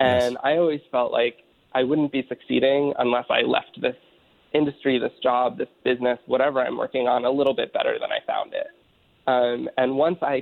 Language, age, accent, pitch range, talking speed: English, 20-39, American, 125-160 Hz, 195 wpm